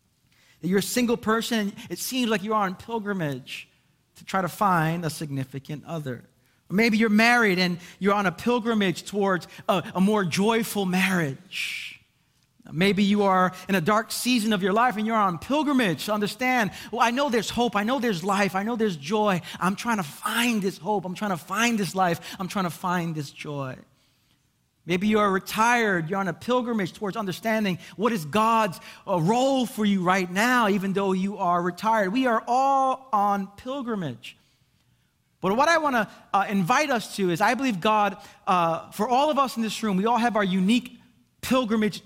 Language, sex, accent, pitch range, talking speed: English, male, American, 180-225 Hz, 190 wpm